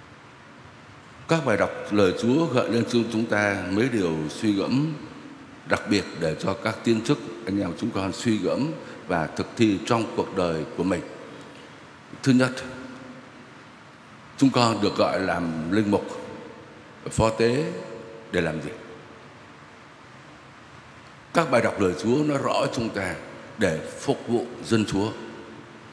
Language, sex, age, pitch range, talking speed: Vietnamese, male, 60-79, 115-165 Hz, 145 wpm